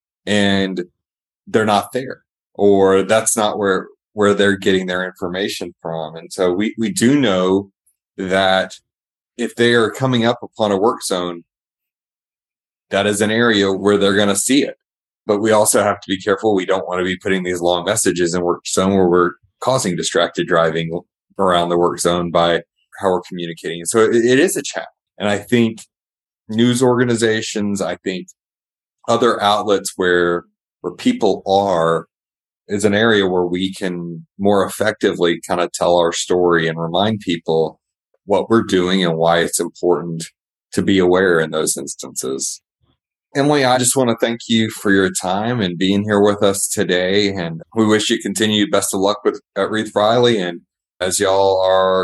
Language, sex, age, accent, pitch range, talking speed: English, male, 30-49, American, 90-105 Hz, 175 wpm